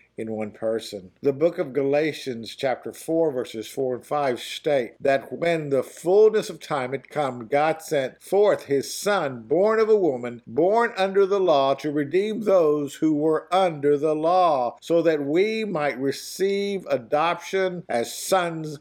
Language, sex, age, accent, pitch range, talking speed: English, male, 50-69, American, 130-175 Hz, 165 wpm